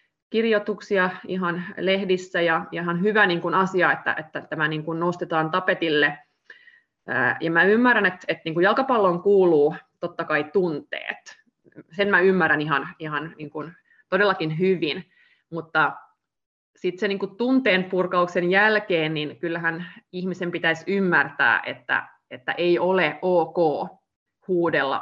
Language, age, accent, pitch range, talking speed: Finnish, 20-39, native, 160-190 Hz, 135 wpm